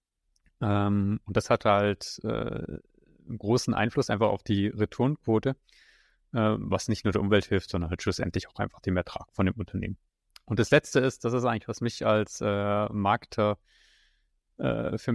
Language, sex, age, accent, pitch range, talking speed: German, male, 30-49, German, 100-115 Hz, 165 wpm